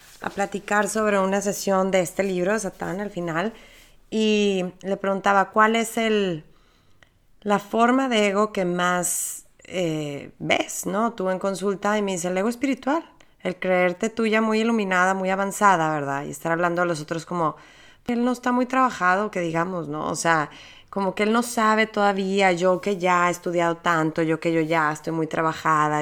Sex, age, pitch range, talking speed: female, 30-49, 175-225 Hz, 185 wpm